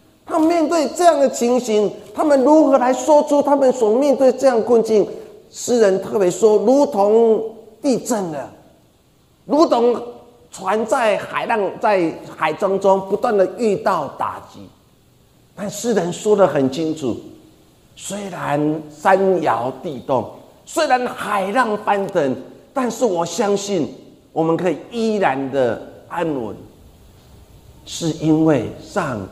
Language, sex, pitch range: Chinese, male, 150-230 Hz